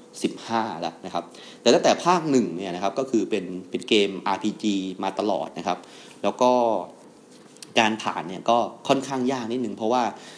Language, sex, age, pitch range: Thai, male, 30-49, 100-125 Hz